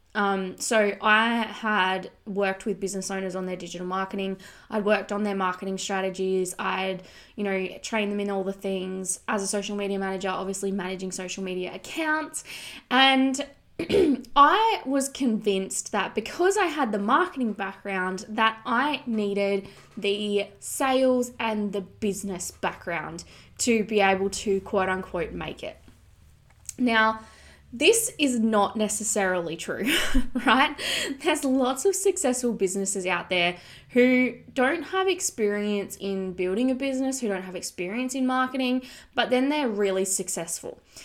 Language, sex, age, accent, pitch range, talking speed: English, female, 10-29, Australian, 190-245 Hz, 145 wpm